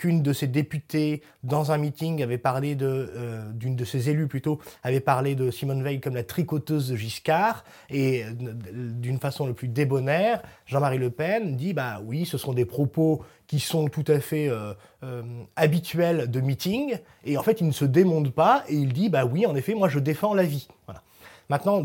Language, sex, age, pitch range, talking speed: French, male, 20-39, 125-165 Hz, 205 wpm